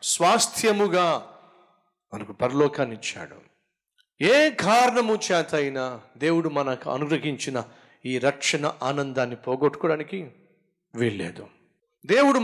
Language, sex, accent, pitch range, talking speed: Telugu, male, native, 140-185 Hz, 80 wpm